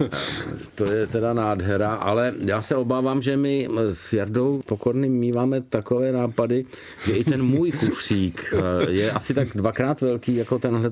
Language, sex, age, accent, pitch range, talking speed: Czech, male, 50-69, native, 105-125 Hz, 155 wpm